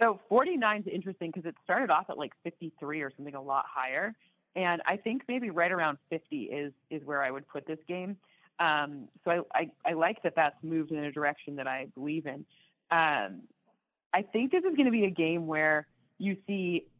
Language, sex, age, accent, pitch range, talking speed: English, female, 30-49, American, 155-190 Hz, 220 wpm